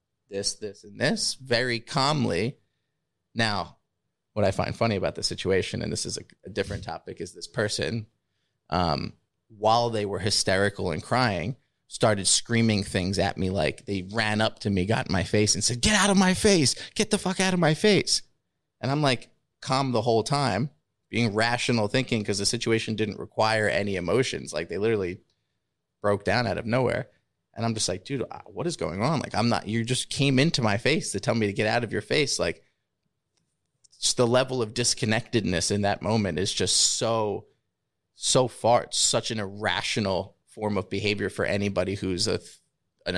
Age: 30-49